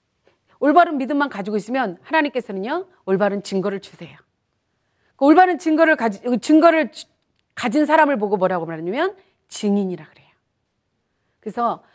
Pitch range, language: 210-325 Hz, Korean